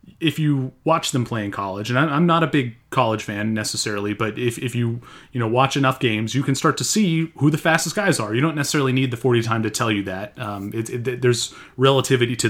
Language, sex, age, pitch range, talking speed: English, male, 30-49, 115-140 Hz, 245 wpm